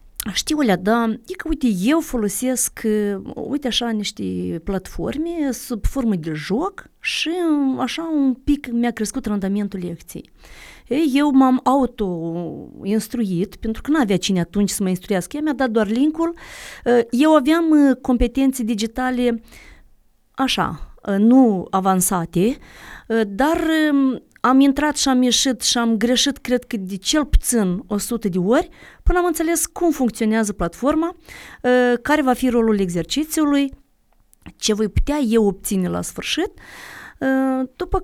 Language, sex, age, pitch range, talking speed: Romanian, female, 30-49, 205-280 Hz, 135 wpm